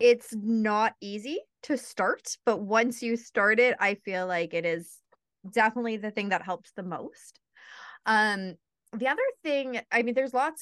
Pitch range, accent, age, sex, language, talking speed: 190-255 Hz, American, 20-39, female, English, 170 wpm